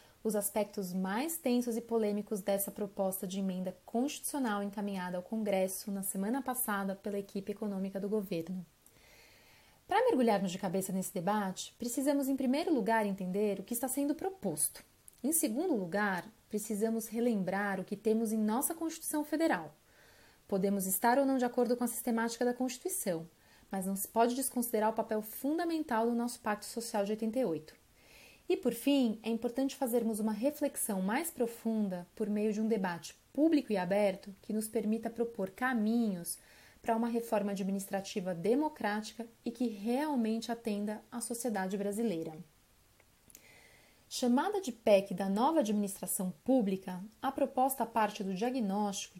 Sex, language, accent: female, Portuguese, Brazilian